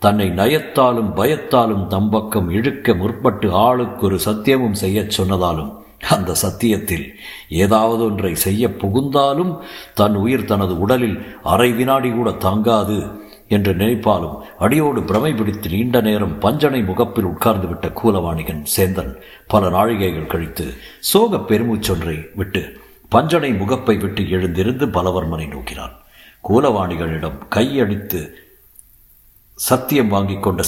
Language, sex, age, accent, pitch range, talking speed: Tamil, male, 60-79, native, 90-110 Hz, 105 wpm